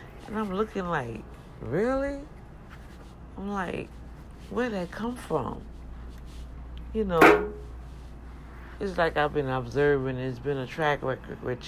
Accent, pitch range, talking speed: American, 125-170 Hz, 125 wpm